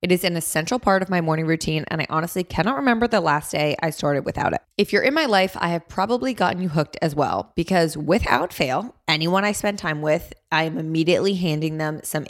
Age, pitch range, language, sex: 20-39, 155-190 Hz, English, female